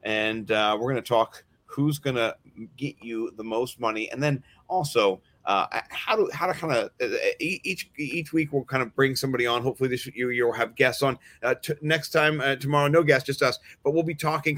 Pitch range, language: 120-155 Hz, English